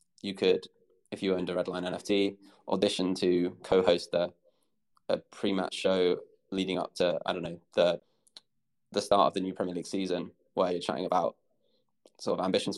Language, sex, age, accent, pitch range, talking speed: English, male, 20-39, British, 90-100 Hz, 175 wpm